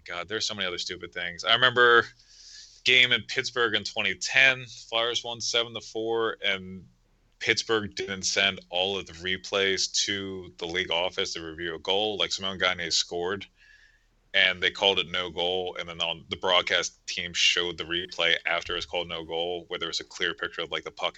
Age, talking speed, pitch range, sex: 30-49, 195 wpm, 90-115 Hz, male